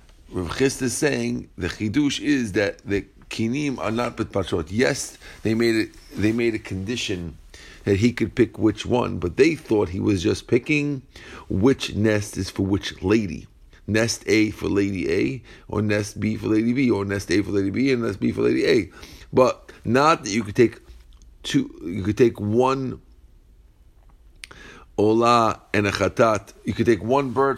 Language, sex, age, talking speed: English, male, 50-69, 180 wpm